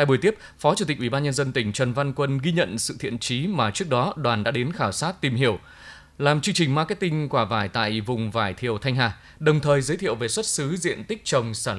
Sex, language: male, Vietnamese